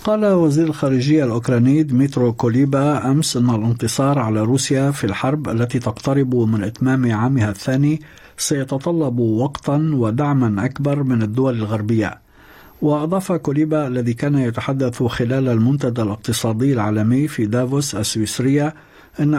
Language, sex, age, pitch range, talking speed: Arabic, male, 50-69, 115-145 Hz, 120 wpm